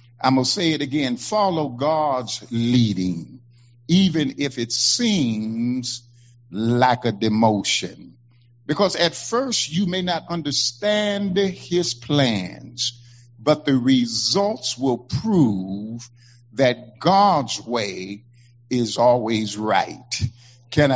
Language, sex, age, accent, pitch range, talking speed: English, male, 50-69, American, 120-155 Hz, 105 wpm